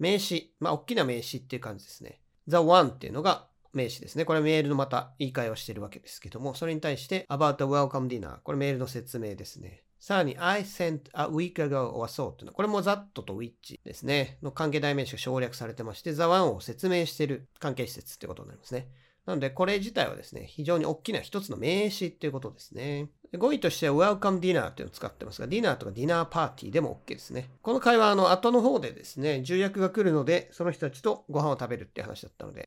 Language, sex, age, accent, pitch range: Japanese, male, 40-59, native, 125-175 Hz